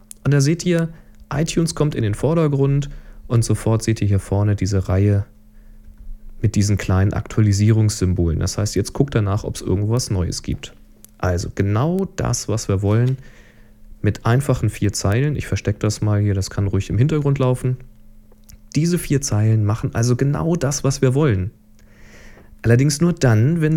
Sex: male